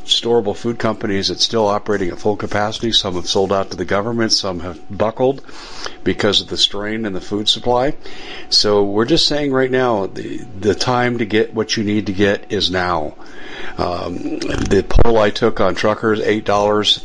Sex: male